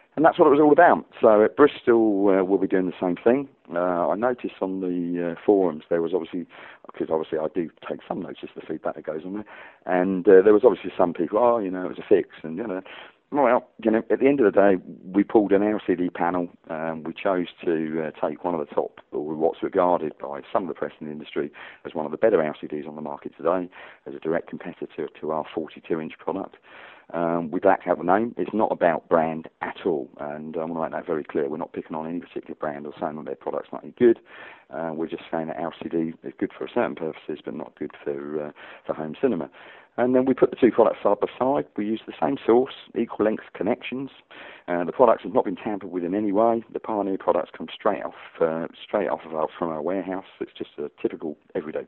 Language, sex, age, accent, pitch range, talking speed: English, male, 40-59, British, 80-105 Hz, 245 wpm